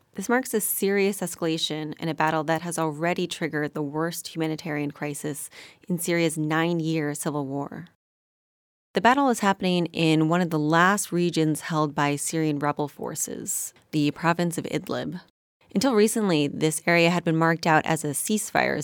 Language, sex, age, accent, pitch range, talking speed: English, female, 20-39, American, 150-175 Hz, 165 wpm